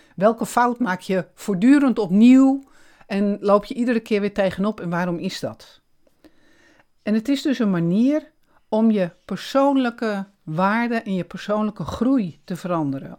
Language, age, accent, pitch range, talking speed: Dutch, 50-69, Dutch, 180-240 Hz, 150 wpm